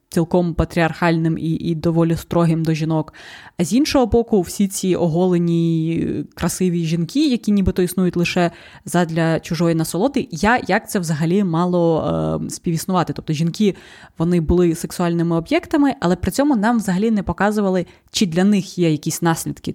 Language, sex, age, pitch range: Ukrainian, female, 20-39, 170-205 Hz